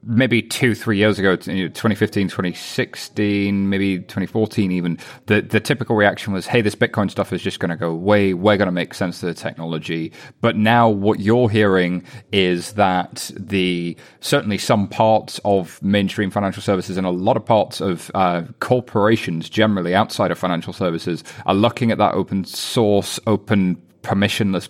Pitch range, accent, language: 95-120 Hz, British, English